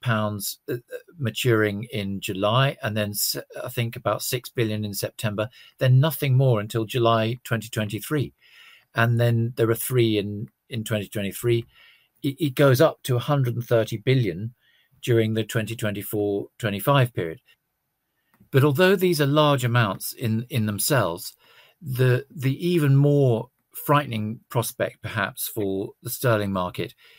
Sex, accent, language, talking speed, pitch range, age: male, British, English, 130 wpm, 105-135 Hz, 50-69